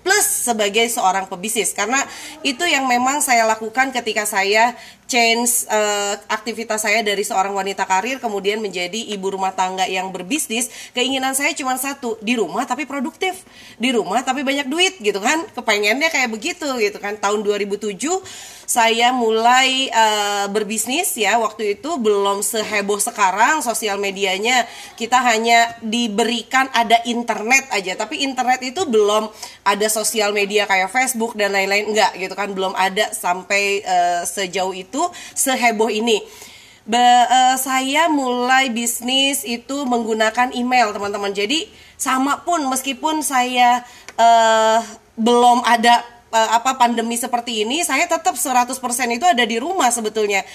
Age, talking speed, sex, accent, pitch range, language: 30-49, 140 wpm, female, native, 210-260 Hz, Indonesian